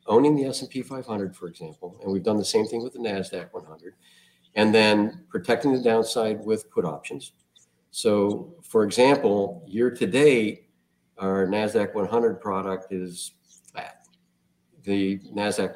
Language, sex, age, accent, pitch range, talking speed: English, male, 50-69, American, 90-125 Hz, 145 wpm